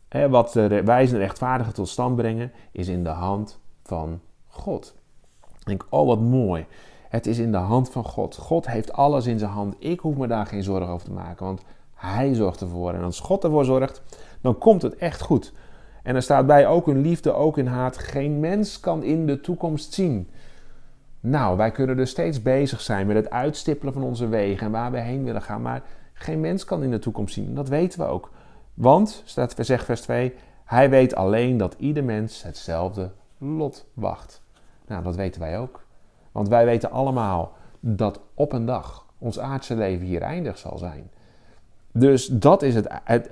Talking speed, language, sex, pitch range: 195 wpm, Dutch, male, 105-135 Hz